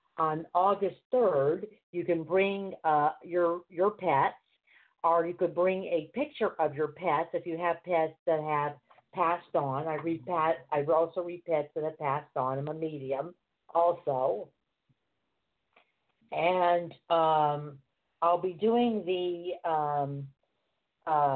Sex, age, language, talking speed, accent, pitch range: female, 50-69, English, 135 wpm, American, 155-185 Hz